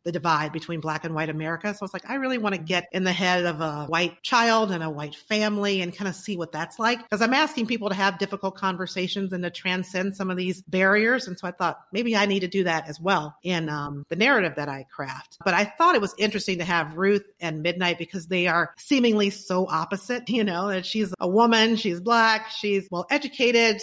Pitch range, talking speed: 170-205 Hz, 240 wpm